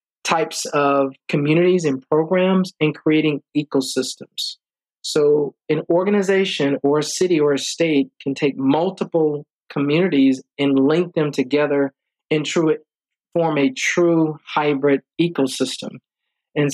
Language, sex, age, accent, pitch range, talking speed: English, male, 40-59, American, 140-165 Hz, 115 wpm